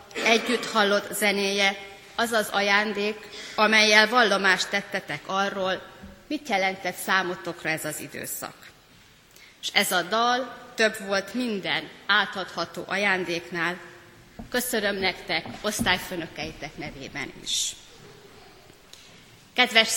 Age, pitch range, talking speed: 30-49, 185-225 Hz, 95 wpm